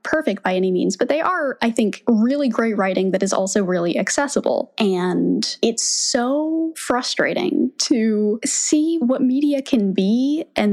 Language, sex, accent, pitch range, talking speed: English, female, American, 190-245 Hz, 155 wpm